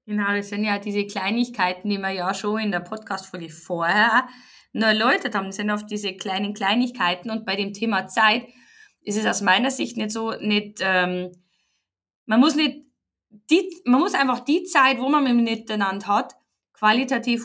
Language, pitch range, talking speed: German, 205-250 Hz, 180 wpm